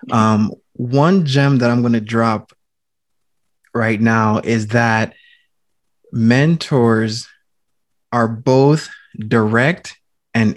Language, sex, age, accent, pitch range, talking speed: English, male, 20-39, American, 115-135 Hz, 95 wpm